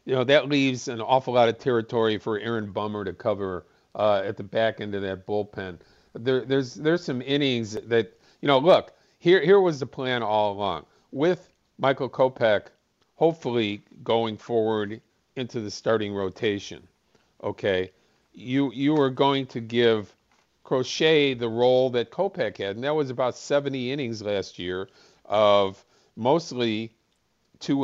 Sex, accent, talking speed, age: male, American, 155 wpm, 50-69